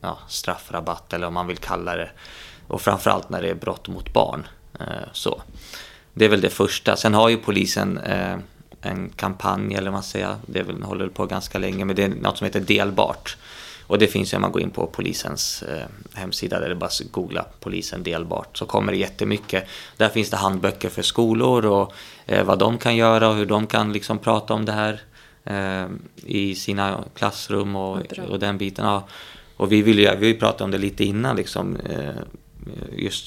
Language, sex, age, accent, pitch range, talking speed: Swedish, male, 20-39, native, 95-110 Hz, 195 wpm